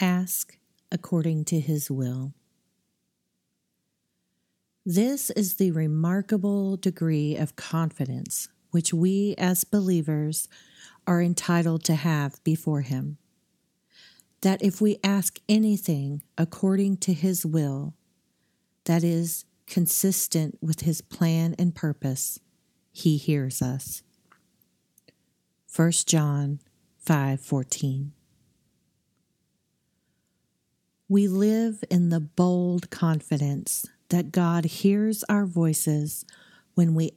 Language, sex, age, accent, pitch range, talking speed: English, female, 40-59, American, 150-185 Hz, 95 wpm